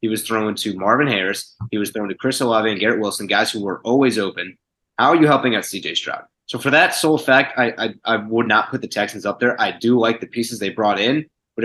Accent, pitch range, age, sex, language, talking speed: American, 100-120 Hz, 20-39, male, English, 265 wpm